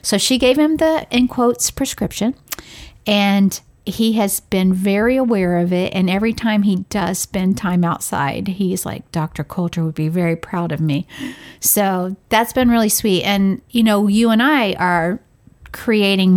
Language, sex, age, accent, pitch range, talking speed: English, female, 50-69, American, 180-220 Hz, 170 wpm